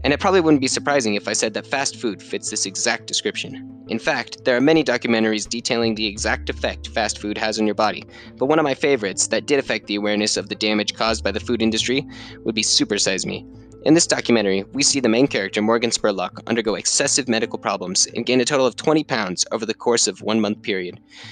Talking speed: 235 wpm